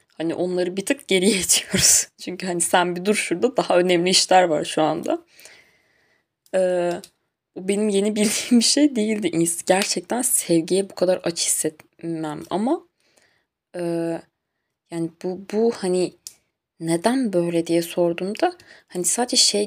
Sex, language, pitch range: female, Turkish, 165-215 Hz